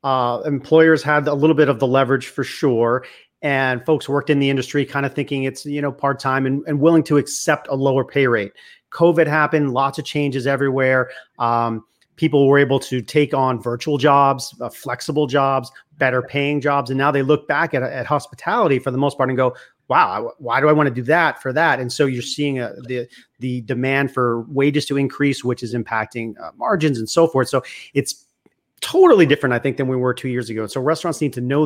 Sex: male